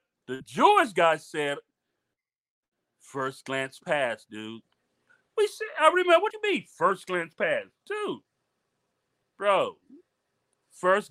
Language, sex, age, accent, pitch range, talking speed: English, male, 40-59, American, 170-270 Hz, 120 wpm